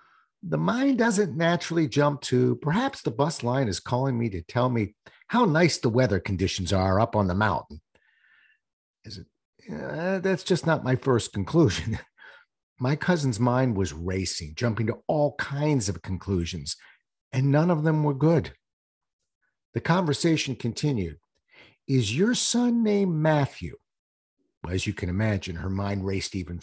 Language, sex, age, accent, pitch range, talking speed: English, male, 50-69, American, 105-170 Hz, 155 wpm